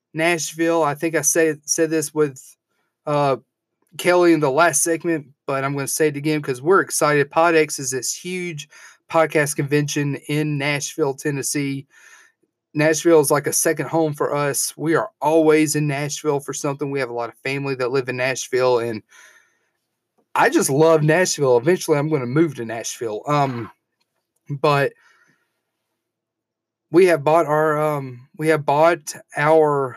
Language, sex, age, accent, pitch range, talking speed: English, male, 30-49, American, 140-165 Hz, 165 wpm